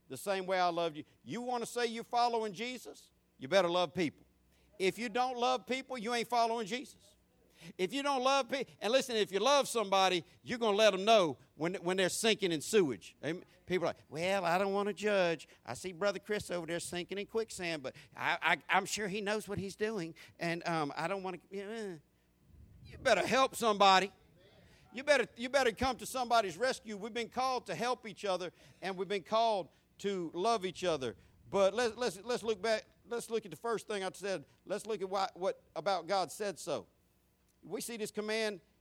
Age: 50-69